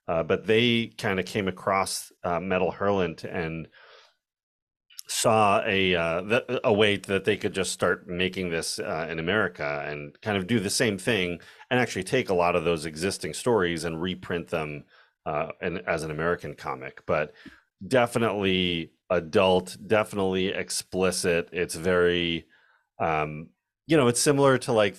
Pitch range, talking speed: 85-105 Hz, 155 wpm